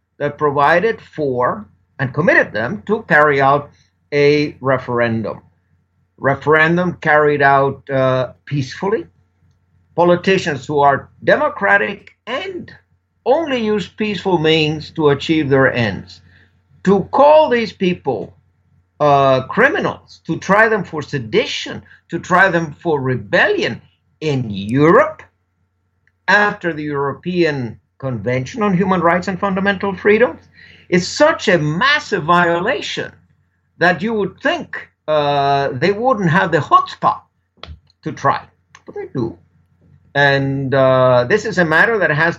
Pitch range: 130-180 Hz